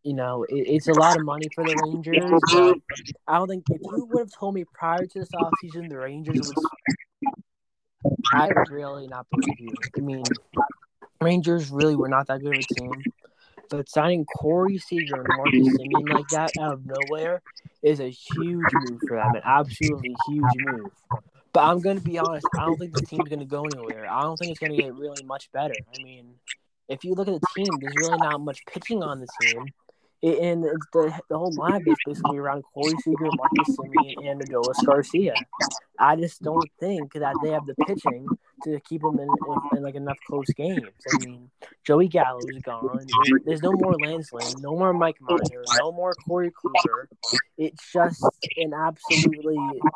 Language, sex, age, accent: English, male, 20-39, American